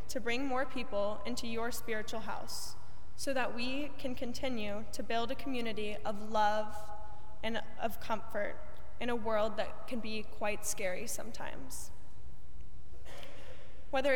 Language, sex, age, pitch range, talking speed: English, female, 10-29, 205-255 Hz, 135 wpm